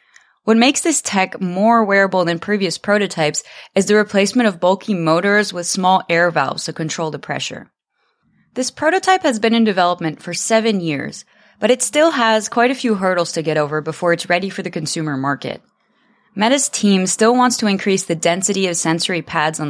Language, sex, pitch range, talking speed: English, female, 165-210 Hz, 190 wpm